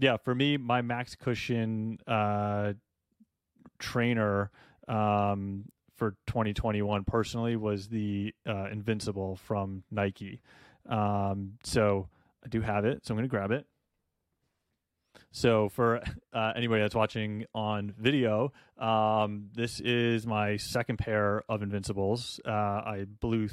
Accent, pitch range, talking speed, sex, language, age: American, 100-115 Hz, 125 wpm, male, English, 30-49